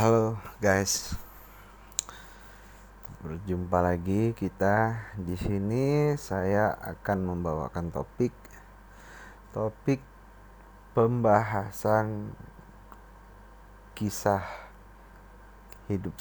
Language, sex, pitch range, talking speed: Malay, male, 90-110 Hz, 55 wpm